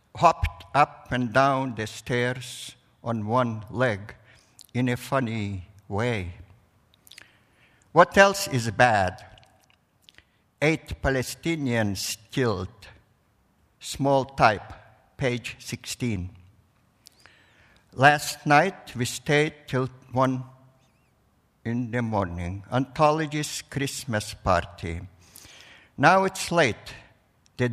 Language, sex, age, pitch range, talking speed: English, male, 60-79, 105-140 Hz, 85 wpm